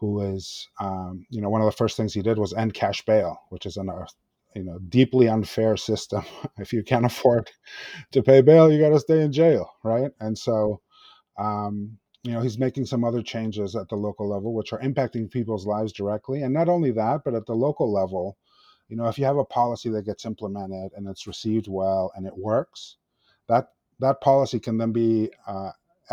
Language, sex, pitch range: English, male, 100-120 Hz